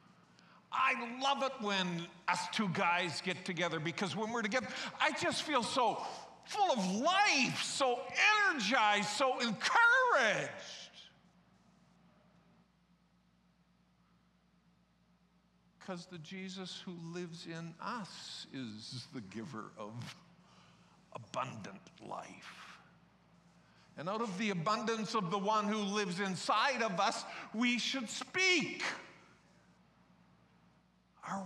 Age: 50-69